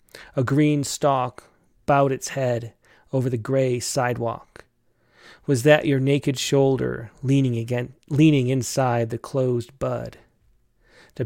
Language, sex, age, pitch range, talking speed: English, male, 30-49, 120-155 Hz, 125 wpm